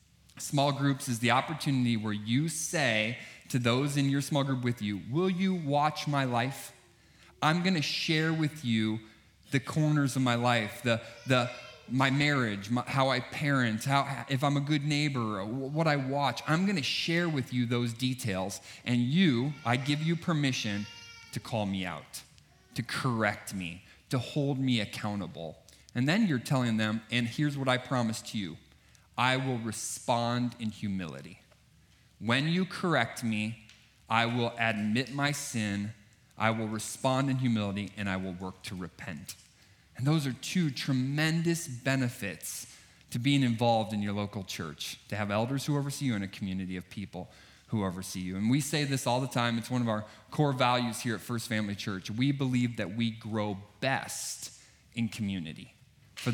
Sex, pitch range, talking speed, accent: male, 110-140 Hz, 175 wpm, American